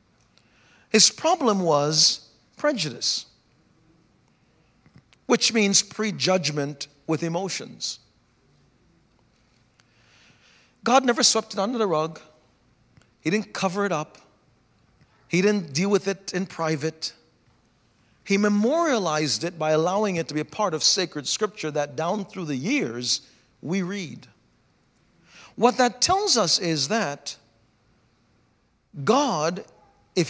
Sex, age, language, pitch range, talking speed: male, 50-69, English, 135-200 Hz, 110 wpm